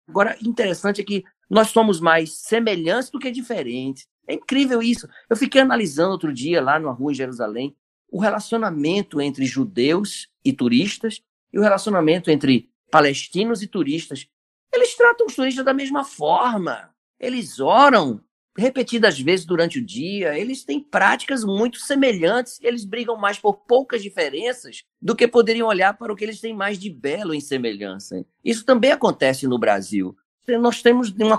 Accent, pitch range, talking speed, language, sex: Brazilian, 140-230 Hz, 160 wpm, Portuguese, male